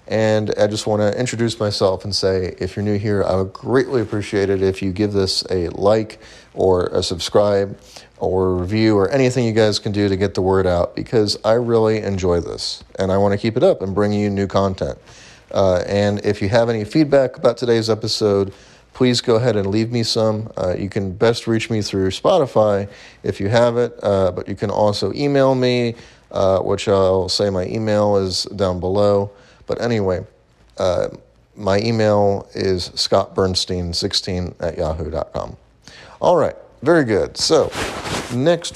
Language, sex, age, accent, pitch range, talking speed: English, male, 30-49, American, 95-115 Hz, 185 wpm